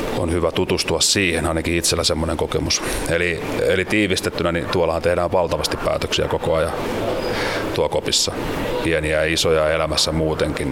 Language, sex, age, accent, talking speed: Finnish, male, 30-49, native, 135 wpm